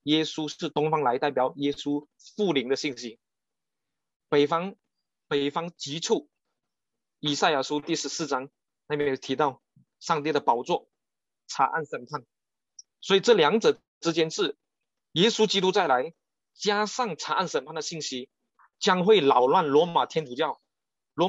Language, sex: Chinese, male